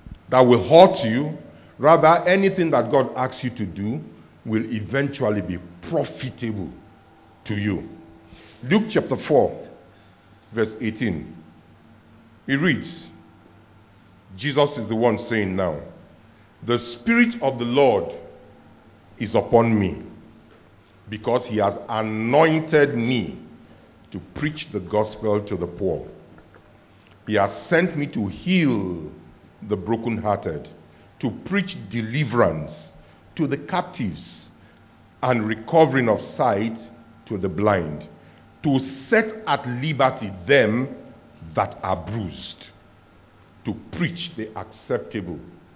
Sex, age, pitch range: male, 50-69, 100-145 Hz